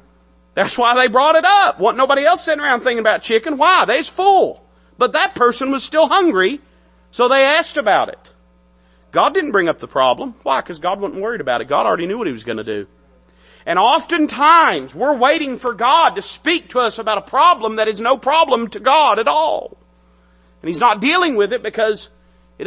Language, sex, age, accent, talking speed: English, male, 40-59, American, 210 wpm